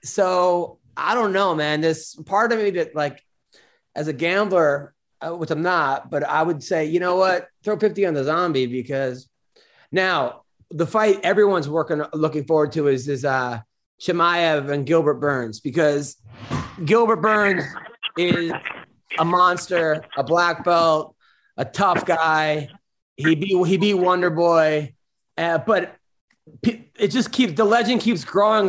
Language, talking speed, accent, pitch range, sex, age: English, 150 wpm, American, 160-205 Hz, male, 30-49